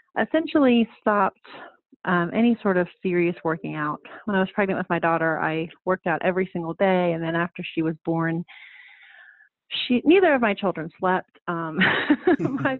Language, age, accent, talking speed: English, 30-49, American, 170 wpm